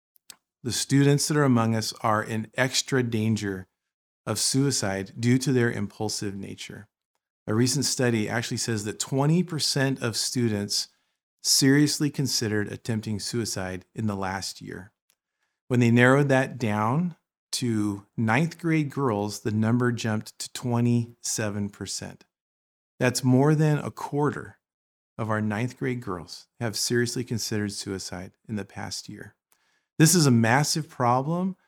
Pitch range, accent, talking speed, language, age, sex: 105-135 Hz, American, 135 wpm, English, 40-59, male